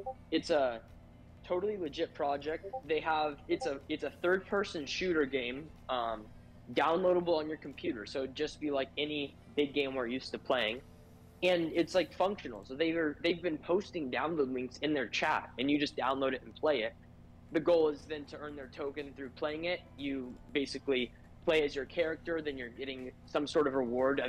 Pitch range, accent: 130-160 Hz, American